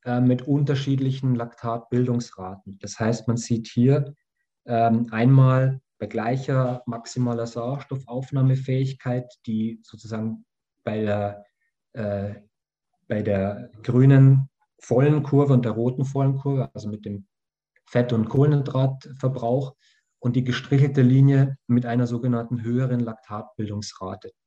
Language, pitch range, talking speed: German, 115-135 Hz, 100 wpm